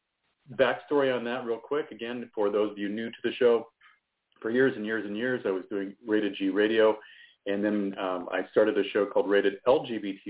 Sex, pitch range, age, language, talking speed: male, 100-125 Hz, 40-59, English, 210 wpm